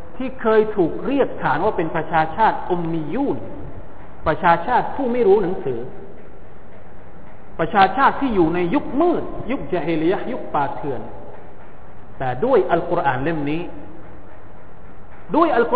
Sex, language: male, Thai